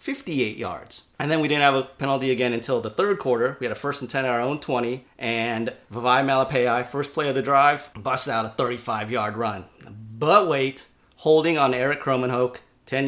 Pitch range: 115-145 Hz